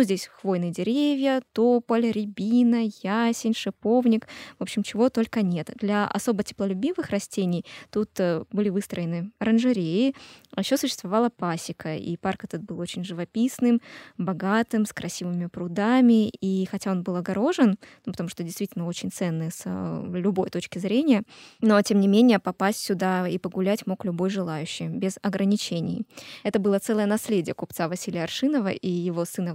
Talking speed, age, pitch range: 145 wpm, 20-39, 180-225 Hz